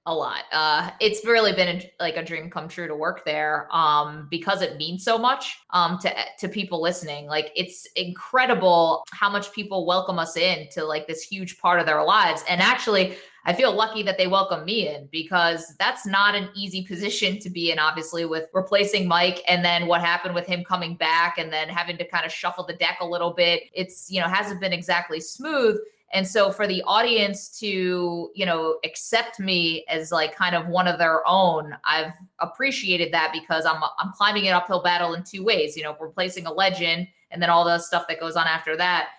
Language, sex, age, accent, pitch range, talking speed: English, female, 20-39, American, 170-190 Hz, 210 wpm